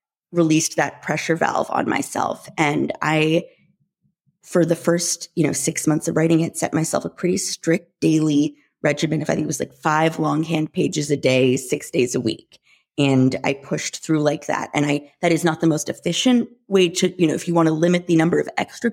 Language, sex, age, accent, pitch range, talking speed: English, female, 30-49, American, 150-180 Hz, 210 wpm